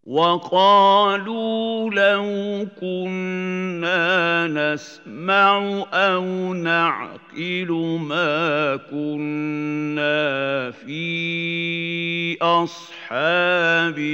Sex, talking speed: male, 40 wpm